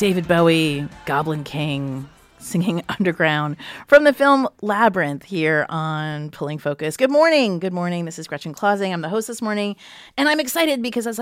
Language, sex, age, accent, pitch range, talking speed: English, female, 30-49, American, 165-215 Hz, 170 wpm